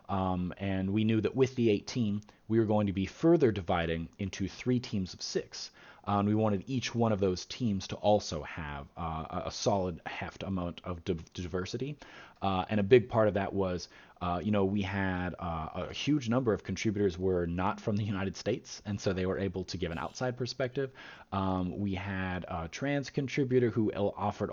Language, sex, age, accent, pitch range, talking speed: English, male, 30-49, American, 90-110 Hz, 205 wpm